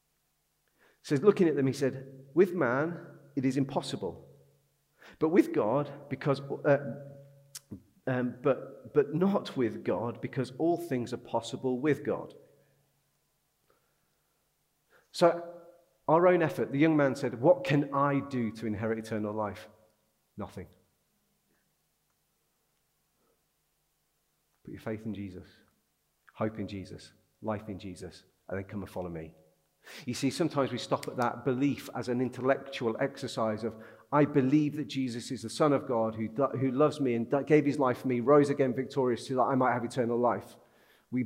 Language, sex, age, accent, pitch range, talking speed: English, male, 40-59, British, 115-155 Hz, 155 wpm